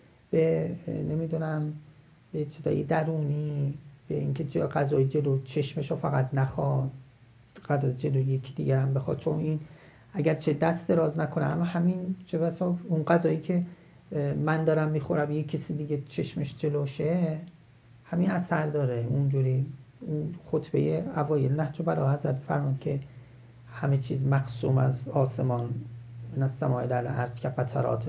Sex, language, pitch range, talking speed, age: male, Persian, 130-160 Hz, 140 wpm, 40-59